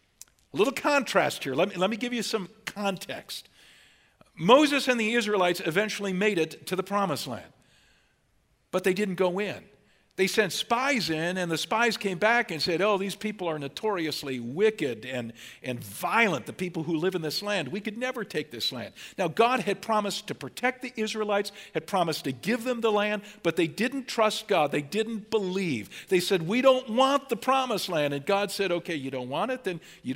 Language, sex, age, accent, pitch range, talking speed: English, male, 50-69, American, 165-220 Hz, 200 wpm